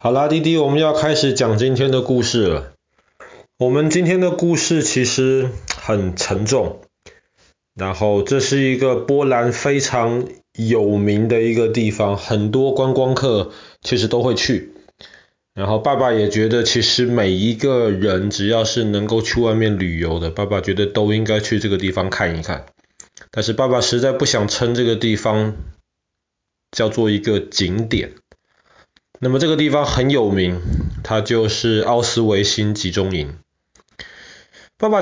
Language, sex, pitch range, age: Chinese, male, 95-125 Hz, 20-39